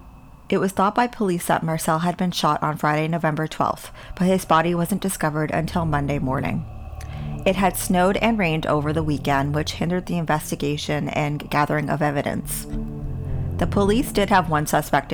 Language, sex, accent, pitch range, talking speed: English, female, American, 145-180 Hz, 175 wpm